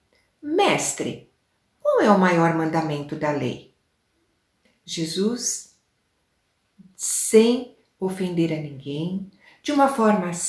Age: 60-79